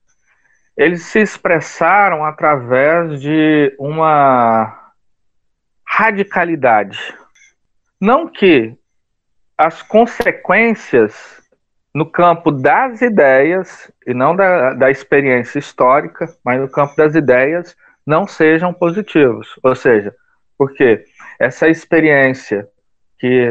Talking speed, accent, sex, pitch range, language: 90 wpm, Brazilian, male, 135-180 Hz, Portuguese